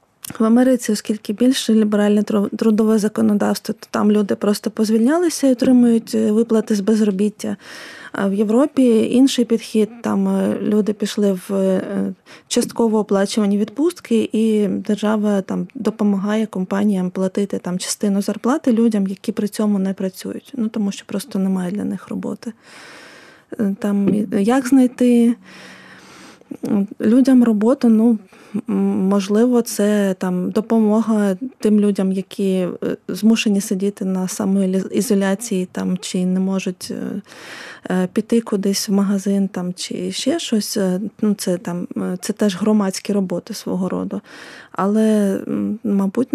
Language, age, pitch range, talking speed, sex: Ukrainian, 20-39, 195-225 Hz, 120 wpm, female